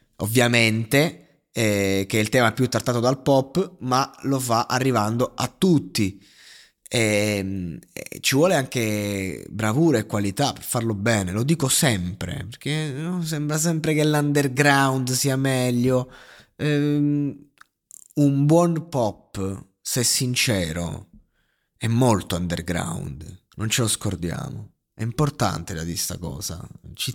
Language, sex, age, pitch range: Italian, male, 20-39, 110-160 Hz